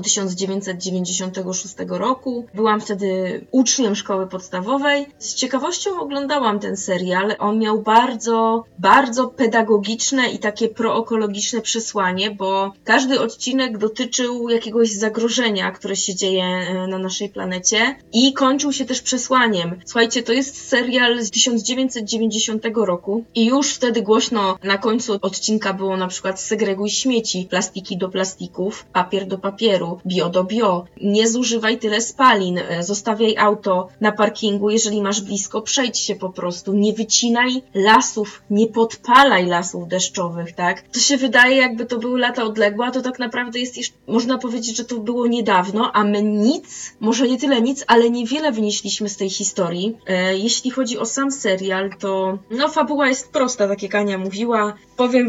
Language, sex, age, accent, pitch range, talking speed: Polish, female, 20-39, native, 195-245 Hz, 150 wpm